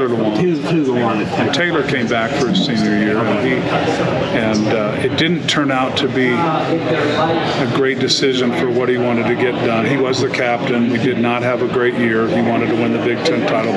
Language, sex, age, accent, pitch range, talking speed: English, male, 50-69, American, 120-130 Hz, 220 wpm